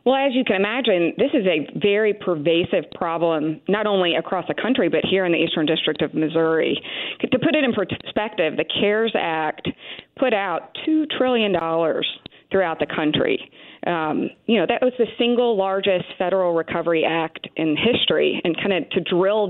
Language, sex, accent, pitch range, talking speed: English, female, American, 160-195 Hz, 175 wpm